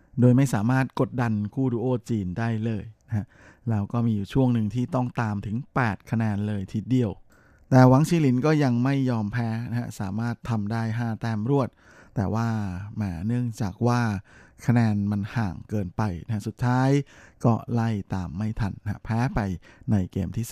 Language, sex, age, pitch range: Thai, male, 20-39, 105-125 Hz